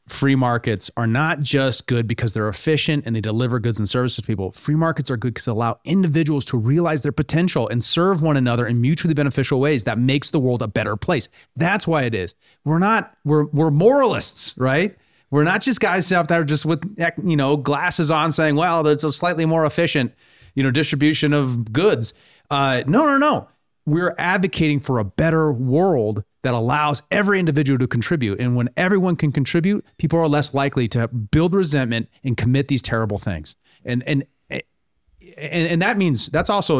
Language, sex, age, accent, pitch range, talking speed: English, male, 30-49, American, 120-160 Hz, 195 wpm